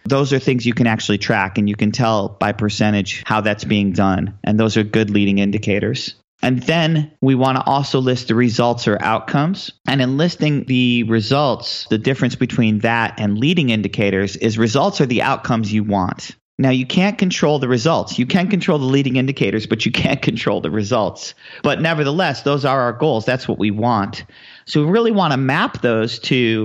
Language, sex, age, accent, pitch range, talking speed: English, male, 40-59, American, 110-135 Hz, 200 wpm